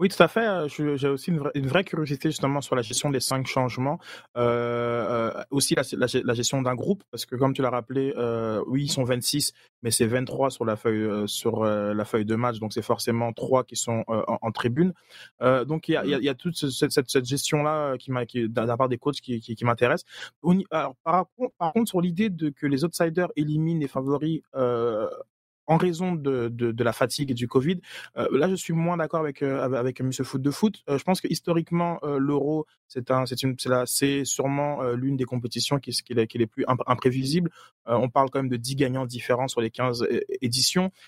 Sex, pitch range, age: male, 120-150 Hz, 20-39